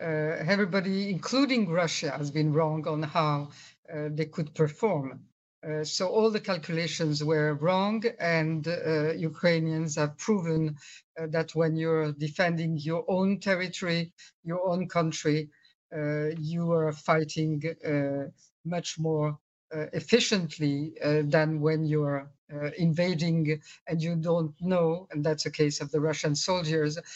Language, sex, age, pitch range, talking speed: English, female, 50-69, 155-180 Hz, 140 wpm